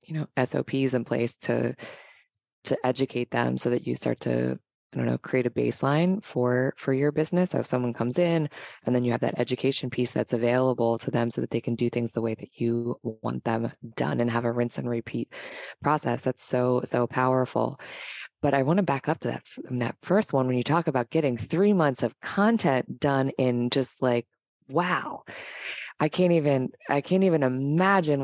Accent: American